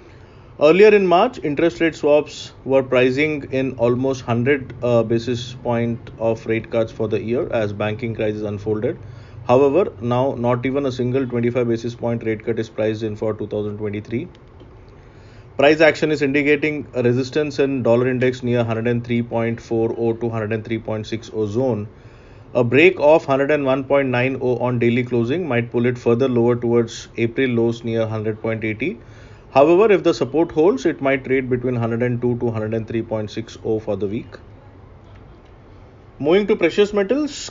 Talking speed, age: 145 wpm, 30-49